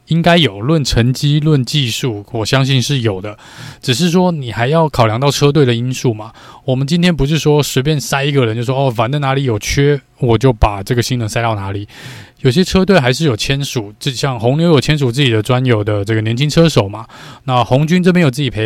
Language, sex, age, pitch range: Chinese, male, 20-39, 115-145 Hz